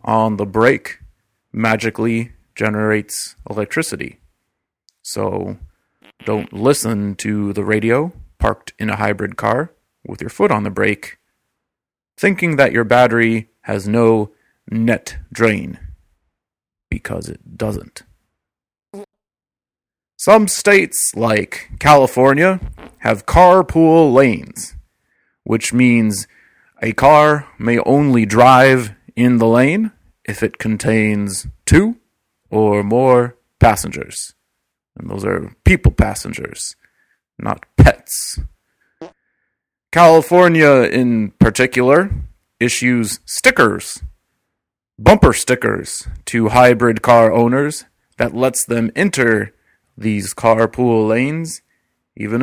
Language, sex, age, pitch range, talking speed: English, male, 30-49, 110-135 Hz, 95 wpm